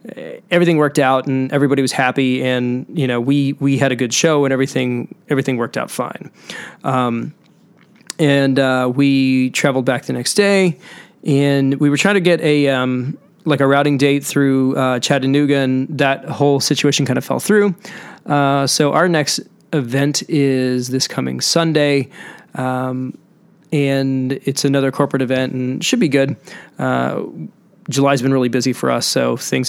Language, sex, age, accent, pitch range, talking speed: English, male, 20-39, American, 130-145 Hz, 170 wpm